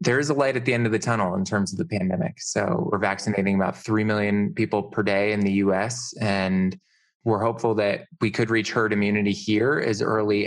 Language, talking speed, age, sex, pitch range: English, 225 wpm, 20-39, male, 100-120 Hz